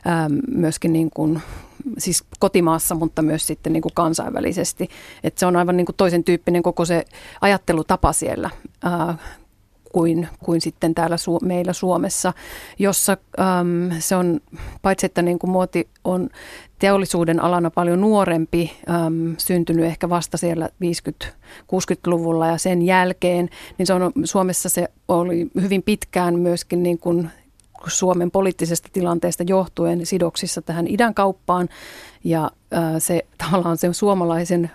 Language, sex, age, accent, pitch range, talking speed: Finnish, female, 30-49, native, 165-185 Hz, 130 wpm